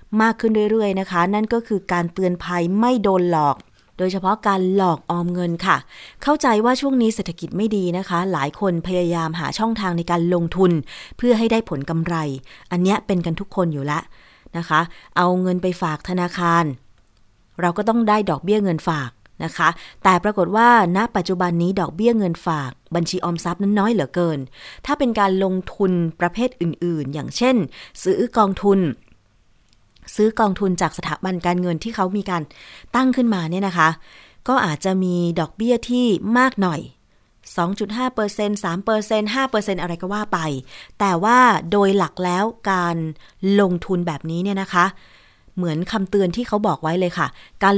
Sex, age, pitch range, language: female, 30-49, 170-210 Hz, Thai